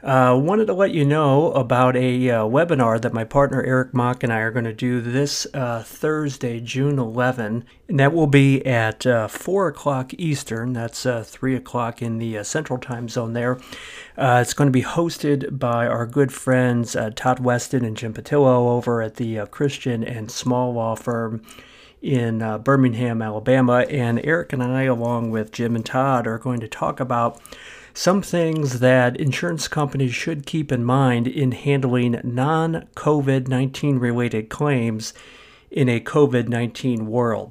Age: 50-69